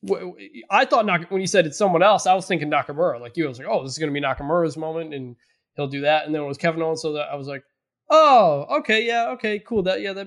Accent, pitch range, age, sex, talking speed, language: American, 150-215 Hz, 20-39, male, 275 wpm, English